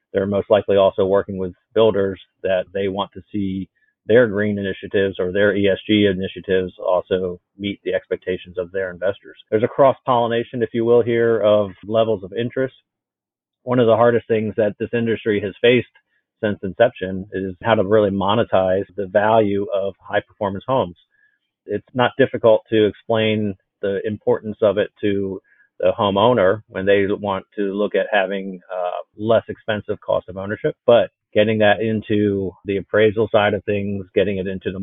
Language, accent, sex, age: English, American, male, 40-59